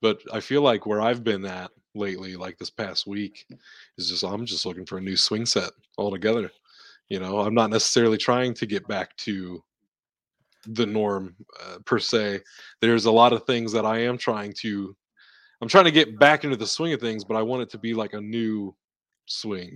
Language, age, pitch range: English, 20-39, 105-130 Hz